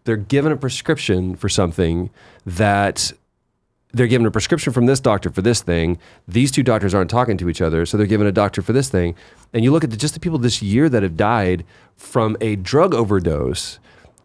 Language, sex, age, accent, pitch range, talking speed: English, male, 30-49, American, 90-120 Hz, 210 wpm